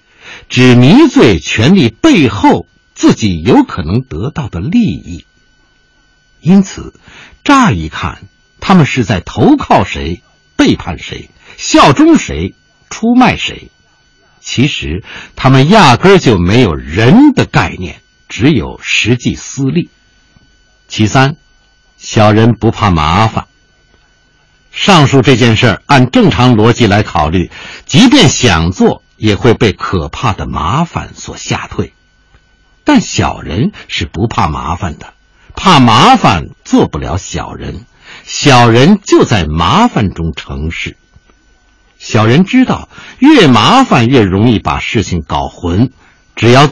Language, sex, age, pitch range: Chinese, male, 60-79, 95-150 Hz